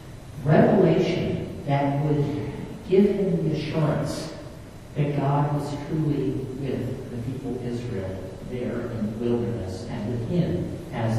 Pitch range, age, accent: 125-170 Hz, 50-69, American